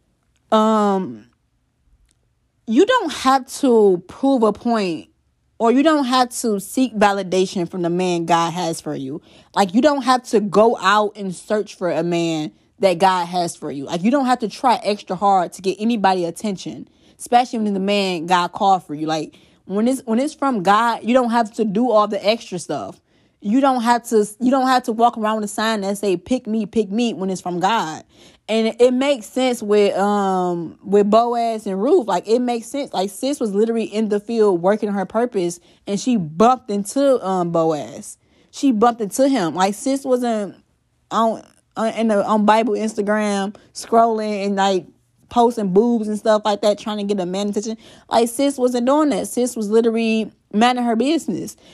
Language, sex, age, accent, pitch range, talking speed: English, female, 20-39, American, 185-230 Hz, 195 wpm